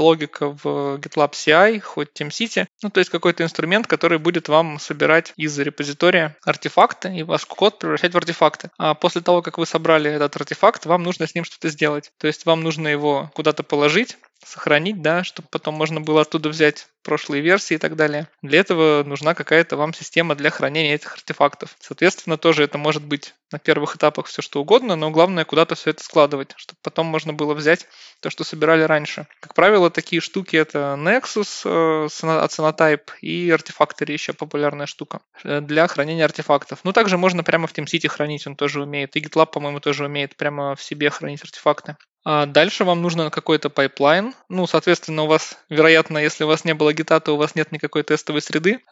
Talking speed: 190 wpm